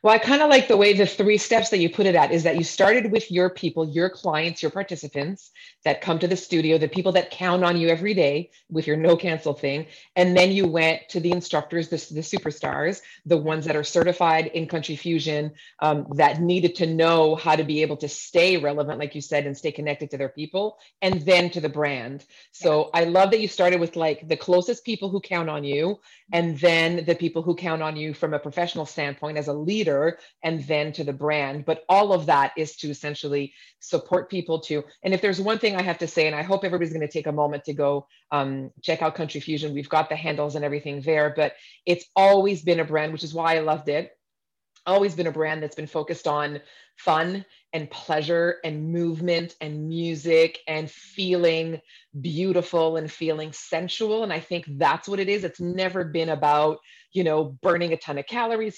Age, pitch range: 30-49, 155-180 Hz